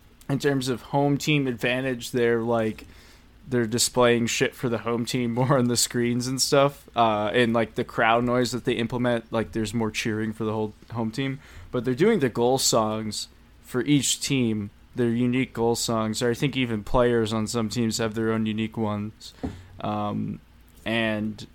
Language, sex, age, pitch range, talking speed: English, male, 20-39, 110-125 Hz, 185 wpm